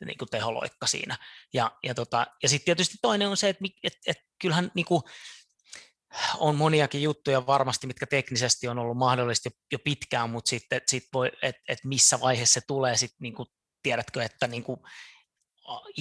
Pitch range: 120-145 Hz